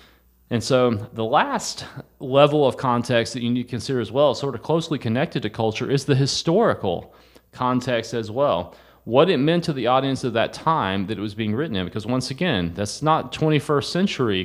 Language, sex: English, male